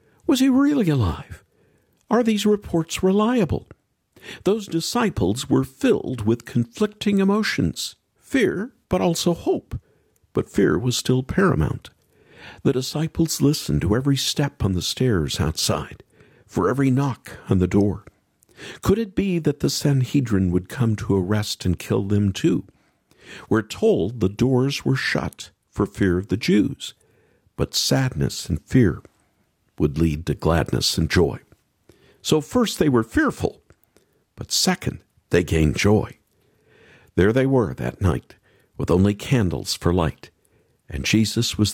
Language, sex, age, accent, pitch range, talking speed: English, male, 50-69, American, 90-155 Hz, 140 wpm